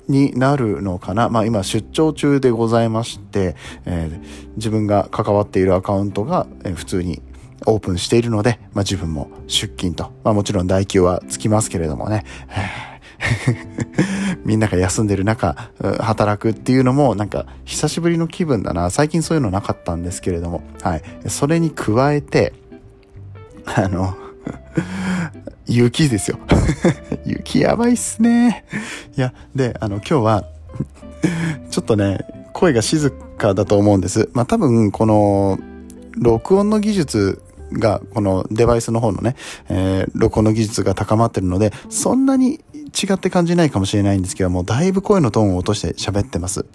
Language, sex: Japanese, male